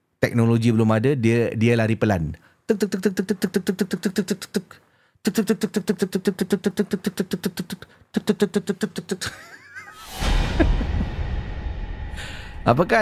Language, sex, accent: Indonesian, male, Malaysian